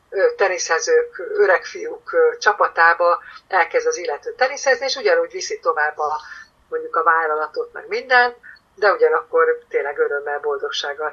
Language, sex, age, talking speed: Hungarian, female, 50-69, 125 wpm